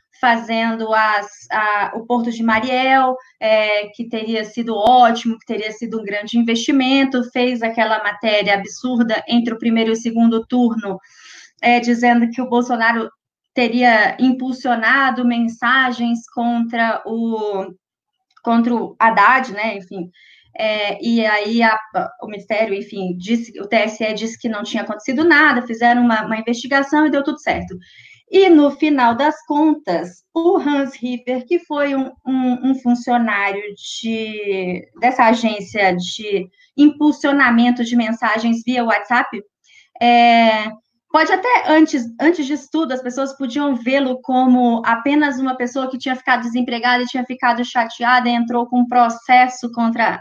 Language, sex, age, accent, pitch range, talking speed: Portuguese, female, 20-39, Brazilian, 220-260 Hz, 145 wpm